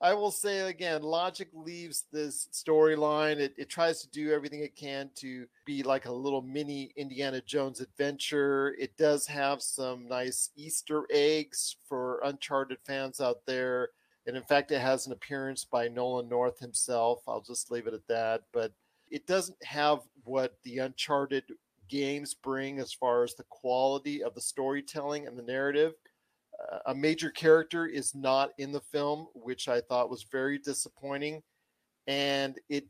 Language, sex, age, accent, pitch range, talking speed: English, male, 40-59, American, 130-155 Hz, 160 wpm